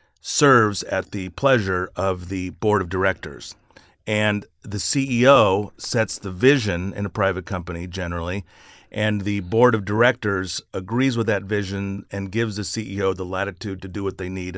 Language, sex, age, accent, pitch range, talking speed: English, male, 40-59, American, 90-110 Hz, 165 wpm